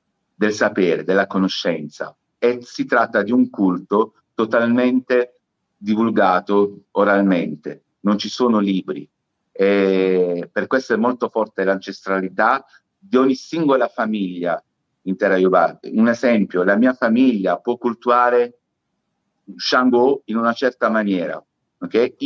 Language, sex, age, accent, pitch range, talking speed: Italian, male, 50-69, native, 100-125 Hz, 120 wpm